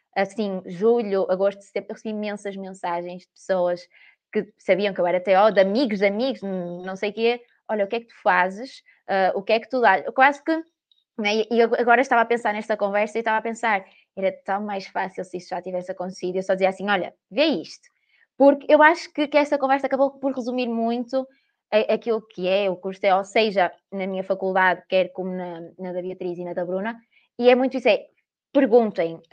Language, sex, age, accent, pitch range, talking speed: Portuguese, female, 20-39, Brazilian, 190-230 Hz, 220 wpm